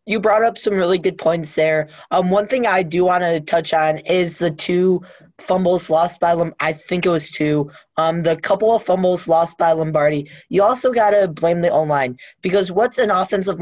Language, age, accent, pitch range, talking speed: English, 20-39, American, 160-195 Hz, 210 wpm